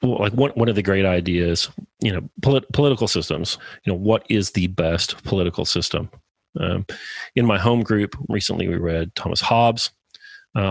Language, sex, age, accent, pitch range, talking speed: English, male, 40-59, American, 90-105 Hz, 175 wpm